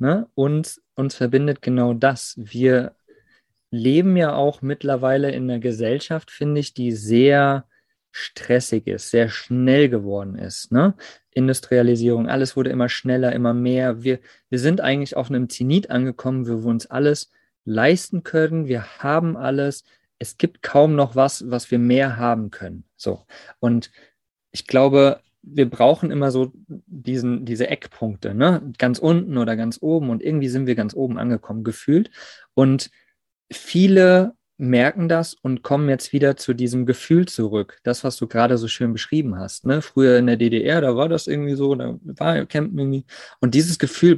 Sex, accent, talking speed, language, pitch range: male, German, 165 wpm, German, 125-145 Hz